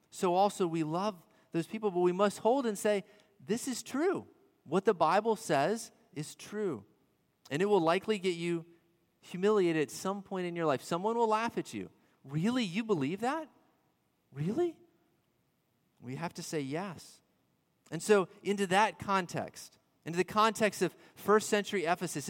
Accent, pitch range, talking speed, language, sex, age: American, 155-205 Hz, 165 wpm, English, male, 30-49